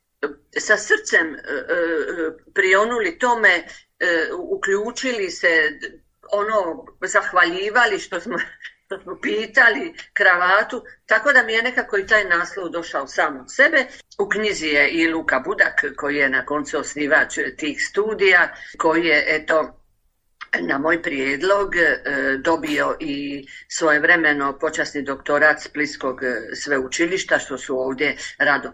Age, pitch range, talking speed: 50-69, 155-225 Hz, 115 wpm